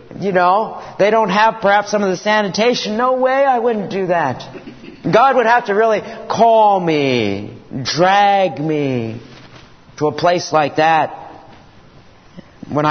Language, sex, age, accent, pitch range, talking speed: English, male, 50-69, American, 165-225 Hz, 145 wpm